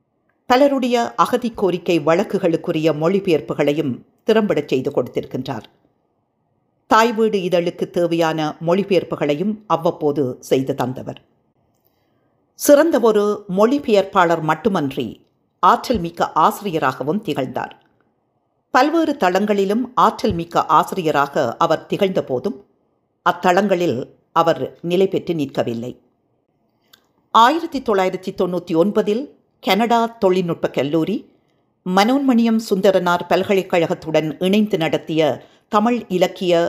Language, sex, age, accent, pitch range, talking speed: Tamil, female, 50-69, native, 160-215 Hz, 75 wpm